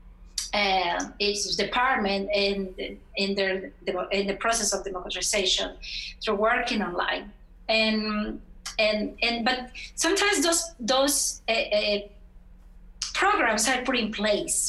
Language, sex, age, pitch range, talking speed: English, female, 30-49, 200-255 Hz, 110 wpm